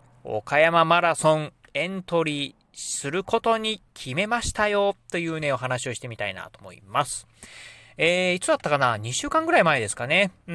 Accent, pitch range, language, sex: native, 120-175 Hz, Japanese, male